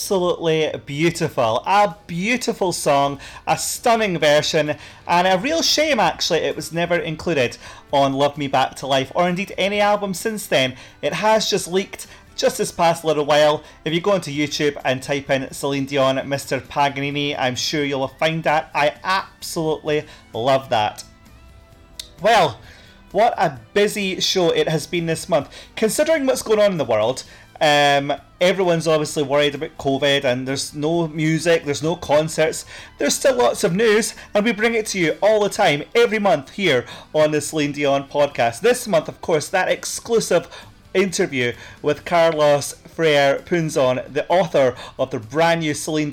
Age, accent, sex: 30-49, British, male